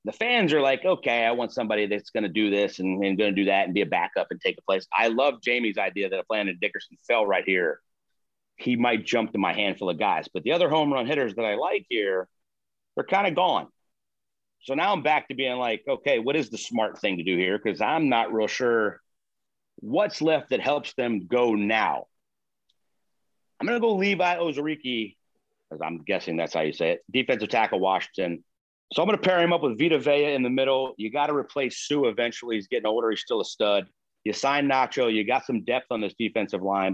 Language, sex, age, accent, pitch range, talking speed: English, male, 40-59, American, 110-155 Hz, 230 wpm